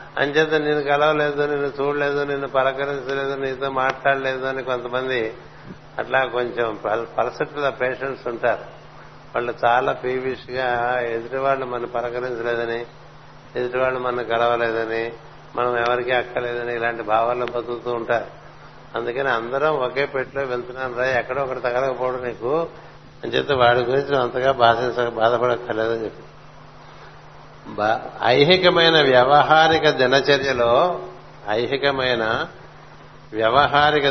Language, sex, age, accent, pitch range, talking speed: Telugu, male, 60-79, native, 120-140 Hz, 100 wpm